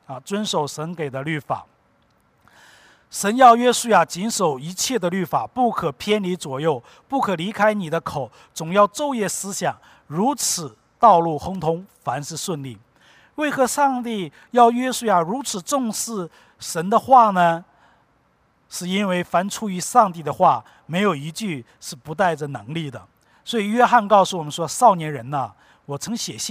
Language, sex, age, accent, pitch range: English, male, 50-69, Chinese, 155-220 Hz